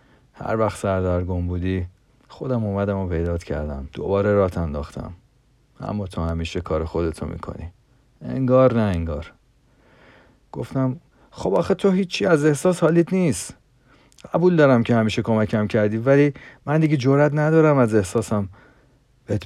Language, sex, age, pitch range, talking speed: Persian, male, 40-59, 90-130 Hz, 140 wpm